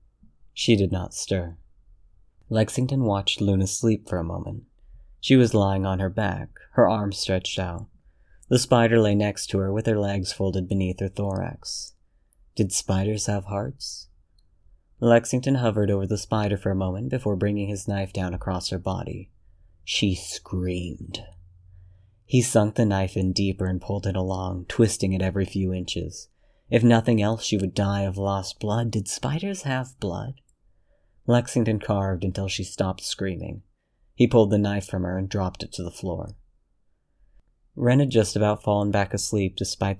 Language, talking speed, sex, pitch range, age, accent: English, 165 wpm, male, 95-110 Hz, 30-49, American